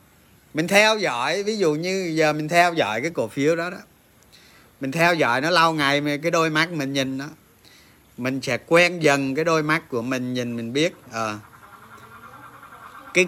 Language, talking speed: Vietnamese, 190 wpm